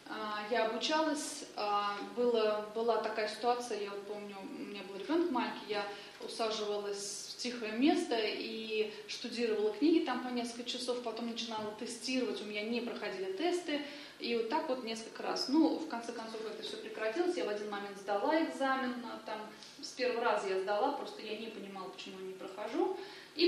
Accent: native